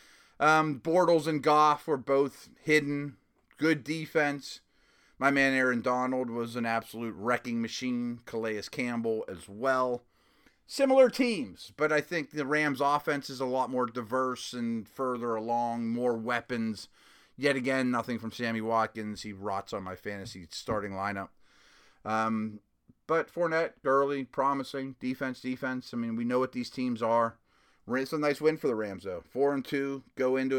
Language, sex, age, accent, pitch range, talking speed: English, male, 30-49, American, 110-140 Hz, 155 wpm